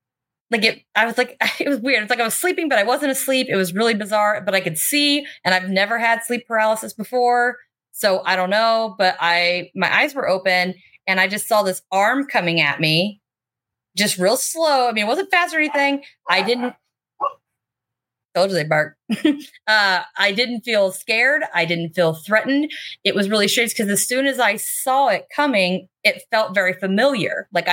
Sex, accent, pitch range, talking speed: female, American, 185-245 Hz, 195 wpm